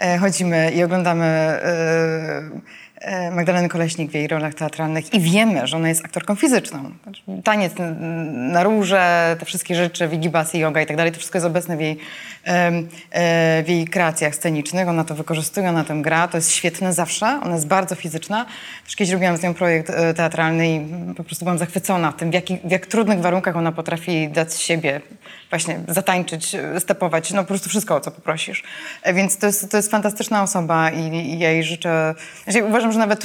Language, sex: Polish, female